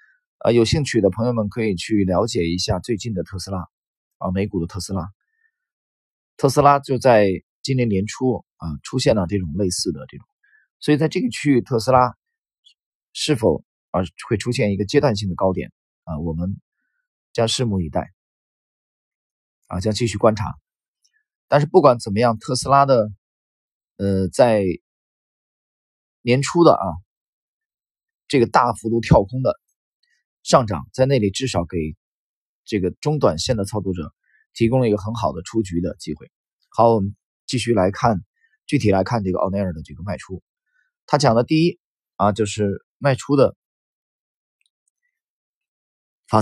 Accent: native